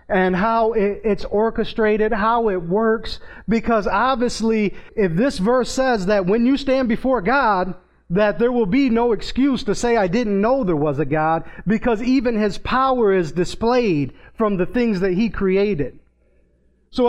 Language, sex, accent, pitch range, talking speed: English, male, American, 210-265 Hz, 165 wpm